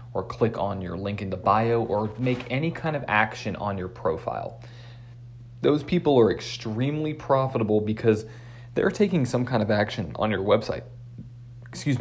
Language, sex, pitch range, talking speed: English, male, 100-120 Hz, 165 wpm